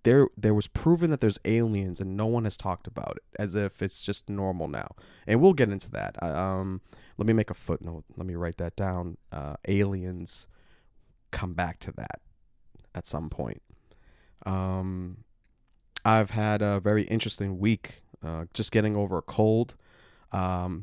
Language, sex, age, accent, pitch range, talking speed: English, male, 30-49, American, 95-130 Hz, 170 wpm